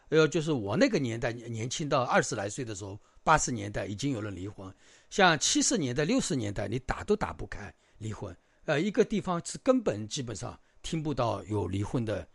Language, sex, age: Chinese, male, 50-69